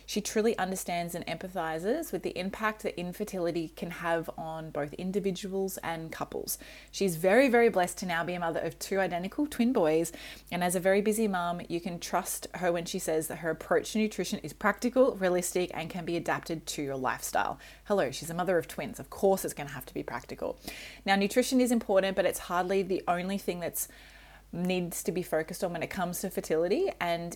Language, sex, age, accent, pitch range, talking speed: English, female, 20-39, Australian, 165-200 Hz, 210 wpm